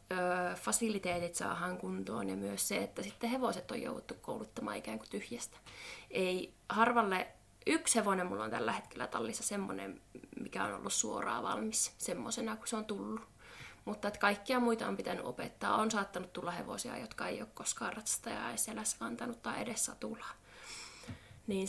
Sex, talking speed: female, 160 wpm